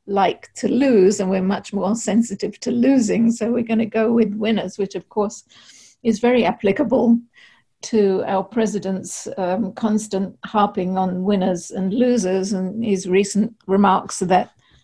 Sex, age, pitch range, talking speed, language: female, 60-79, 195-235 Hz, 155 wpm, English